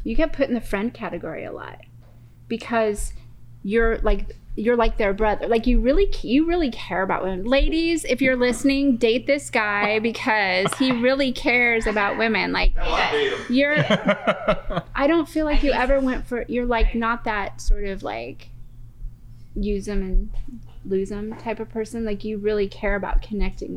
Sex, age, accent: female, 30-49, American